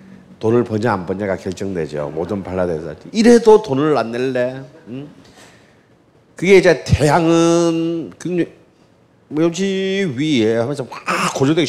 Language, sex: Korean, male